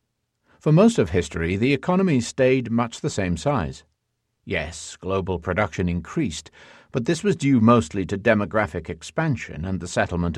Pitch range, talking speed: 85-125 Hz, 150 wpm